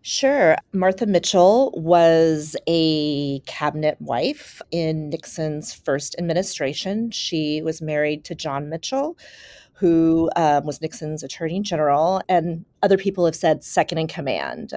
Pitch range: 155-195 Hz